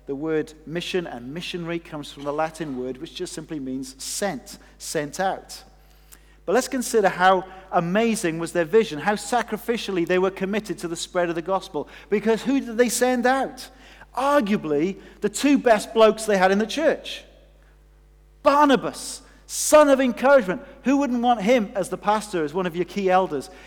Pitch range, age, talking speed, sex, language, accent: 175-245 Hz, 40-59, 175 wpm, male, English, British